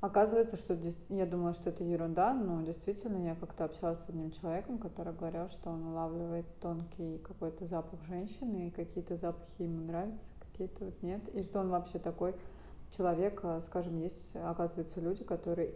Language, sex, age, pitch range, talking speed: Russian, female, 30-49, 170-190 Hz, 165 wpm